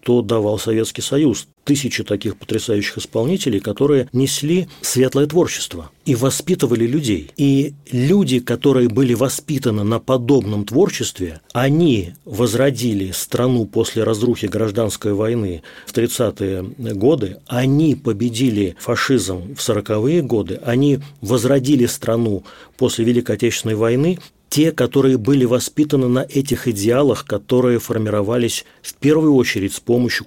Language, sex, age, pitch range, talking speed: Russian, male, 30-49, 110-135 Hz, 120 wpm